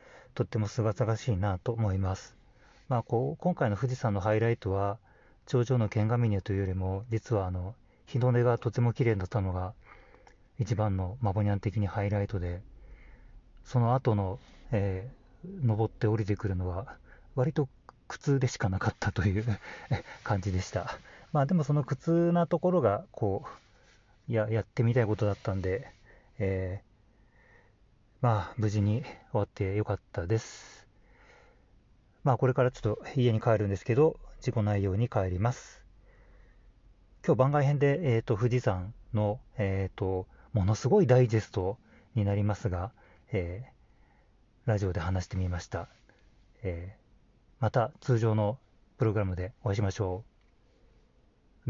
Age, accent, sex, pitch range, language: 40-59, native, male, 100-120 Hz, Japanese